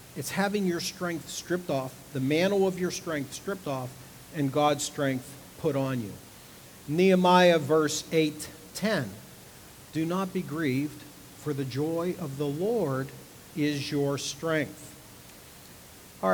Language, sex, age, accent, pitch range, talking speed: English, male, 50-69, American, 135-170 Hz, 135 wpm